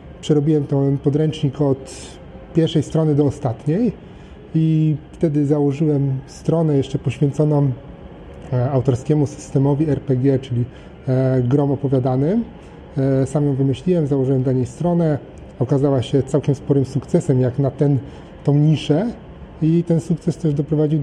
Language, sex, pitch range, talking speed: Polish, male, 130-155 Hz, 120 wpm